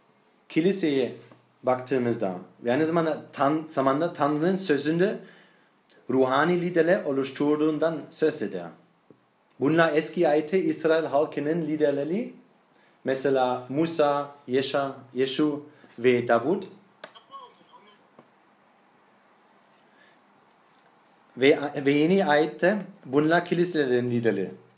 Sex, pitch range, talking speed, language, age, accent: male, 130-165 Hz, 75 wpm, Turkish, 40-59, German